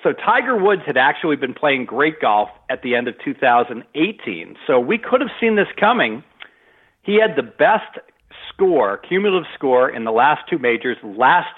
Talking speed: 175 wpm